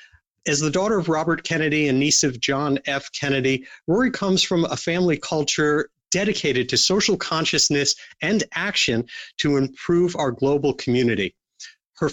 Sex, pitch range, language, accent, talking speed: male, 140-175 Hz, English, American, 150 wpm